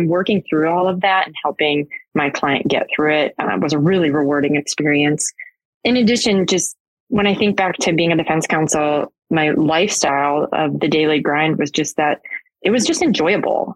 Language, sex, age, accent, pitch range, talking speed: English, female, 20-39, American, 155-185 Hz, 190 wpm